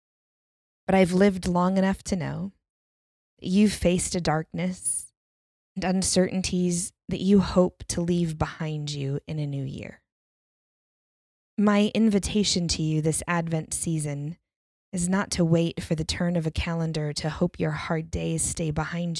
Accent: American